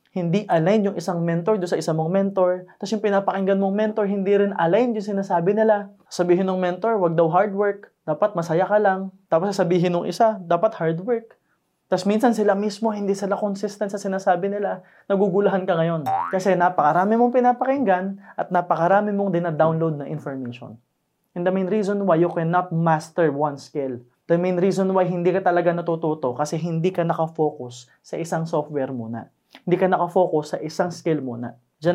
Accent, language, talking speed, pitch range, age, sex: native, Filipino, 185 wpm, 150-195 Hz, 20-39, male